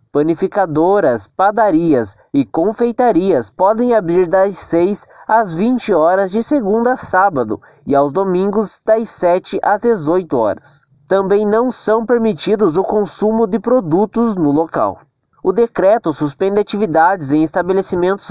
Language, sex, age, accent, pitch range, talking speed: Portuguese, male, 20-39, Brazilian, 175-225 Hz, 130 wpm